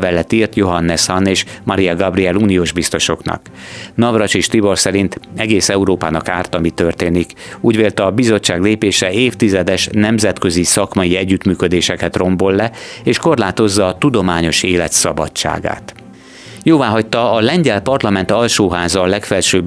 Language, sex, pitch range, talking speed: Hungarian, male, 90-105 Hz, 130 wpm